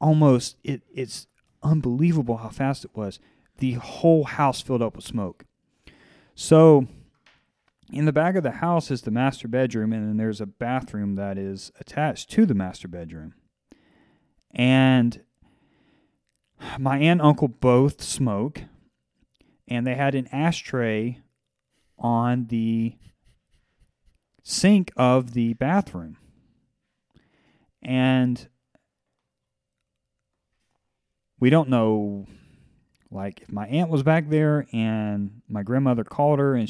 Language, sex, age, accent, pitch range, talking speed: English, male, 30-49, American, 110-140 Hz, 120 wpm